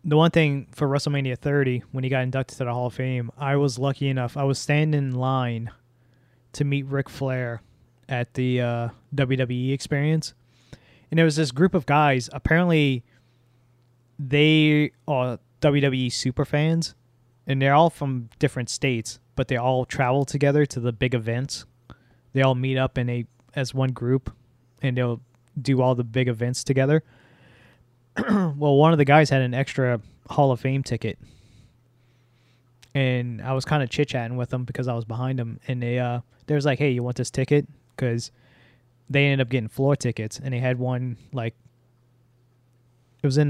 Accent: American